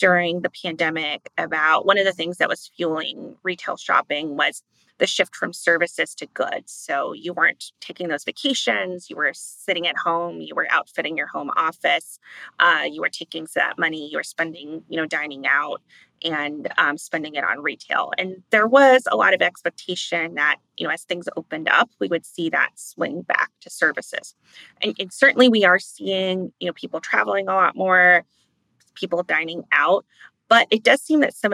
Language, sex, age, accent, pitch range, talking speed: English, female, 20-39, American, 165-200 Hz, 190 wpm